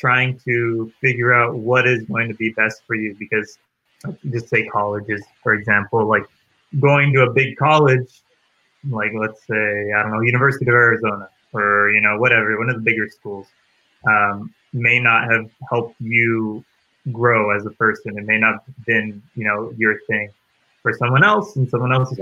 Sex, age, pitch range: male, 20-39, 105-125 Hz